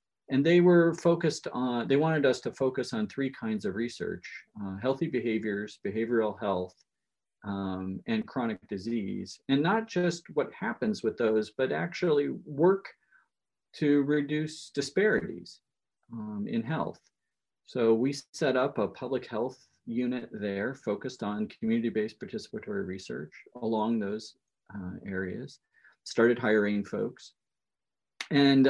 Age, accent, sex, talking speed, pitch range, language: 40-59, American, male, 130 wpm, 105-160 Hz, English